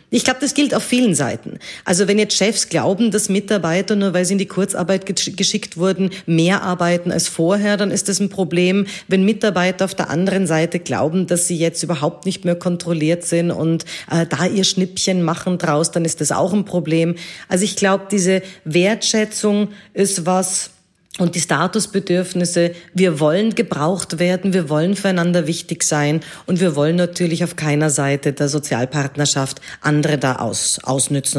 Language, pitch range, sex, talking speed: German, 170-205 Hz, female, 170 wpm